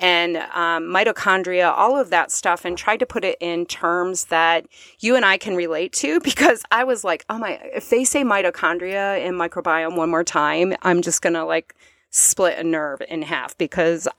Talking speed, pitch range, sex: 195 wpm, 165-205 Hz, female